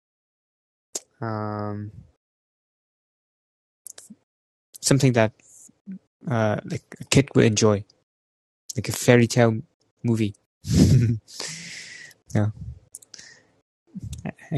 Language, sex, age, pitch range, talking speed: English, male, 20-39, 105-115 Hz, 60 wpm